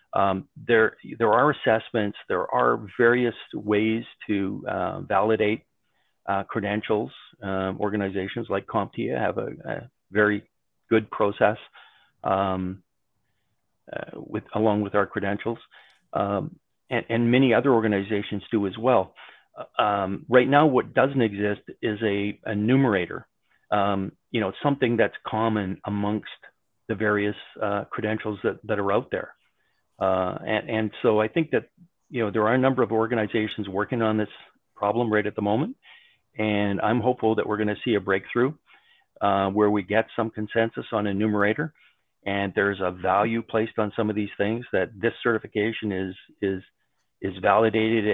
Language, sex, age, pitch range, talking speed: English, male, 40-59, 100-115 Hz, 155 wpm